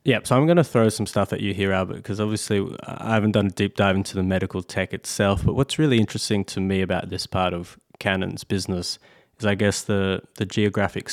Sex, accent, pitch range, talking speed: male, Australian, 95-110 Hz, 230 wpm